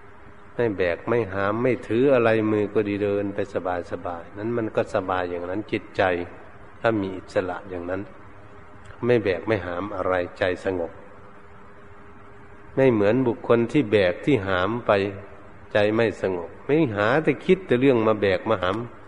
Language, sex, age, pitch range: Thai, male, 60-79, 100-120 Hz